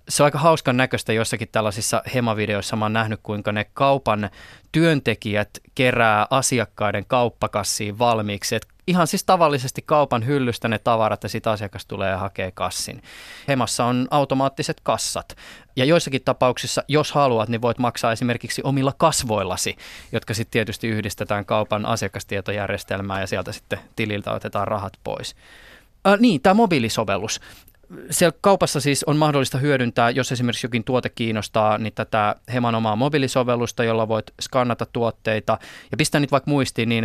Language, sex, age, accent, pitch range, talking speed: Finnish, male, 20-39, native, 110-130 Hz, 150 wpm